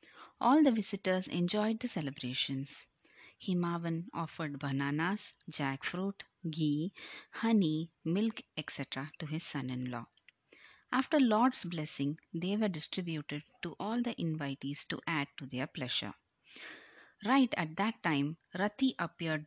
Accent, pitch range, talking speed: native, 155-200 Hz, 115 wpm